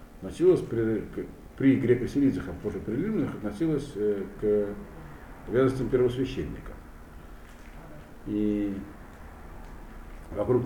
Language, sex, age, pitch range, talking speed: Russian, male, 60-79, 75-105 Hz, 80 wpm